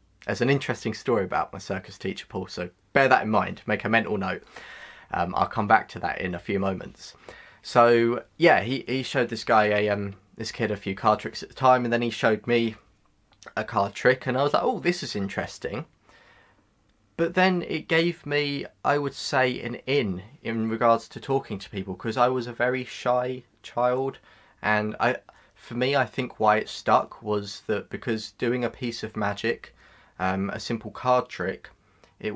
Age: 20-39